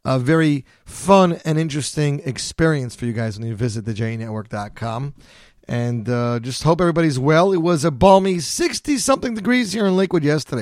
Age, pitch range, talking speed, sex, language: 40-59, 115-165 Hz, 170 wpm, male, English